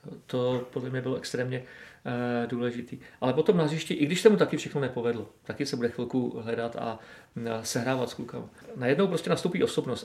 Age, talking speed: 40-59, 185 wpm